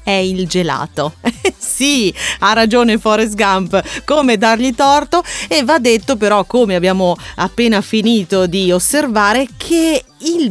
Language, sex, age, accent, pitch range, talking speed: Italian, female, 30-49, native, 185-265 Hz, 130 wpm